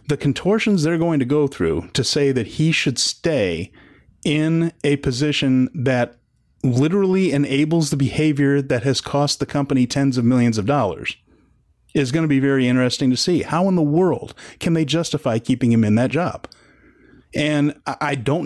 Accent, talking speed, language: American, 175 wpm, English